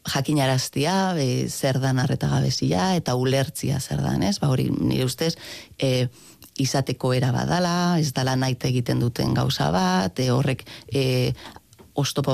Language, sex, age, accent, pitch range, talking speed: Spanish, female, 30-49, Spanish, 125-155 Hz, 125 wpm